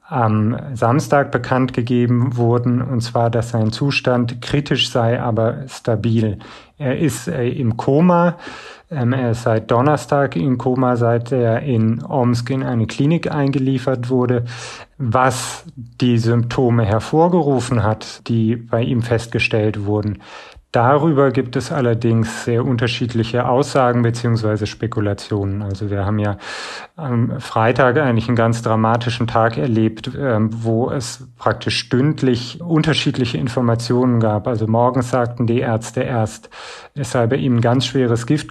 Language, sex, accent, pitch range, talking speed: German, male, German, 115-130 Hz, 135 wpm